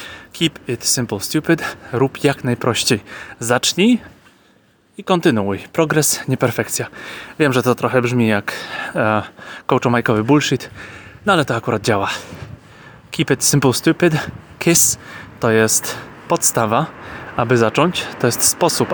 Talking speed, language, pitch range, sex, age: 125 wpm, Polish, 115-145 Hz, male, 20-39